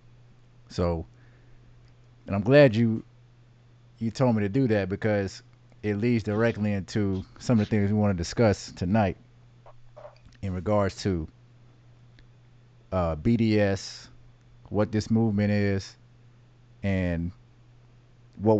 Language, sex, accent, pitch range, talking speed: English, male, American, 100-120 Hz, 115 wpm